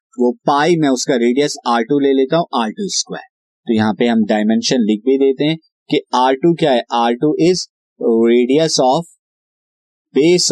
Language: Hindi